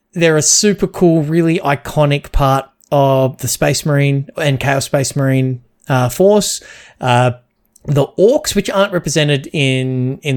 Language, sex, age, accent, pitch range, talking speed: English, male, 30-49, Australian, 125-150 Hz, 145 wpm